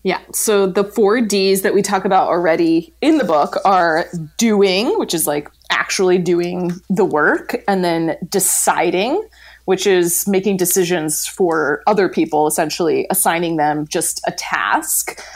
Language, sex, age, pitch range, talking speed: English, female, 20-39, 170-205 Hz, 150 wpm